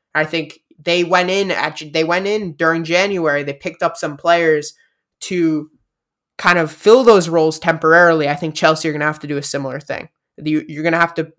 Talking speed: 210 wpm